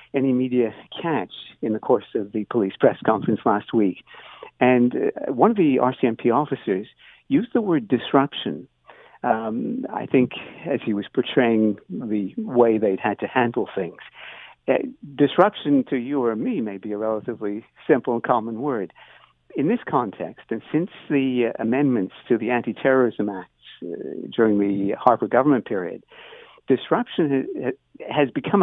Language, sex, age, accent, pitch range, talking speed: English, male, 60-79, American, 110-140 Hz, 155 wpm